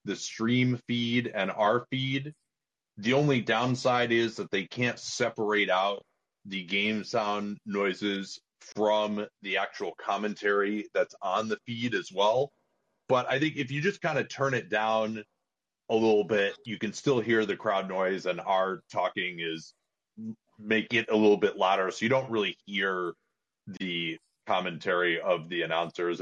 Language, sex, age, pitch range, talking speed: English, male, 30-49, 95-125 Hz, 160 wpm